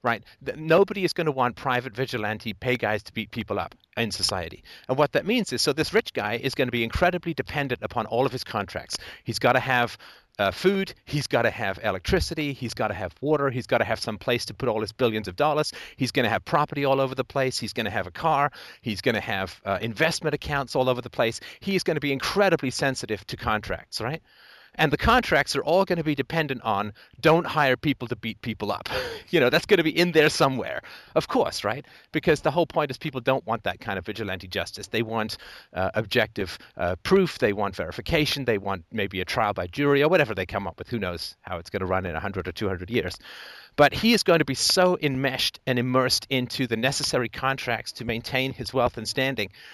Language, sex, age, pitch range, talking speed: English, male, 40-59, 115-145 Hz, 240 wpm